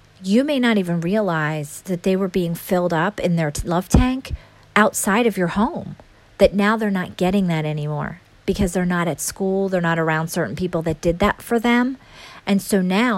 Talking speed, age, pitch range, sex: 200 wpm, 40-59, 165-205 Hz, female